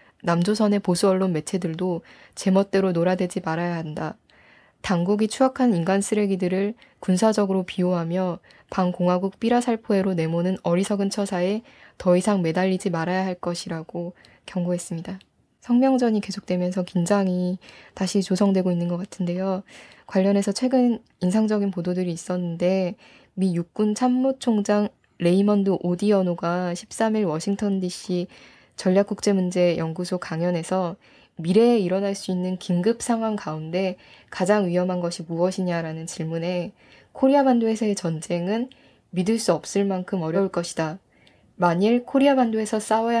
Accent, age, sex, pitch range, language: native, 20-39, female, 180-215 Hz, Korean